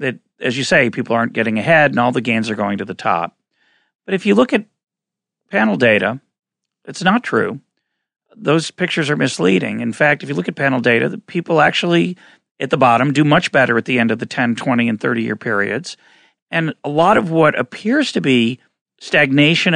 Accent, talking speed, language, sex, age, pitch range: American, 200 wpm, English, male, 40-59, 115-165 Hz